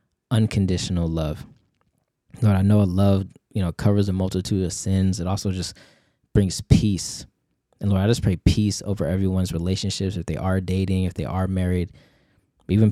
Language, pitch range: English, 90-105 Hz